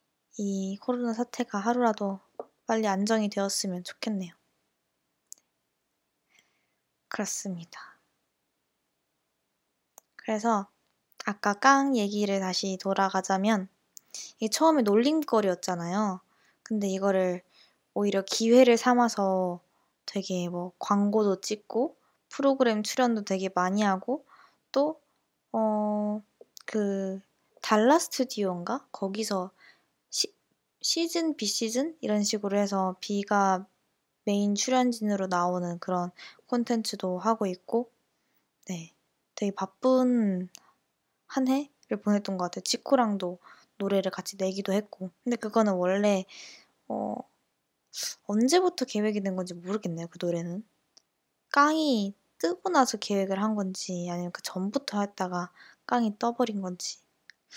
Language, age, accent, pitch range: Korean, 20-39, native, 190-235 Hz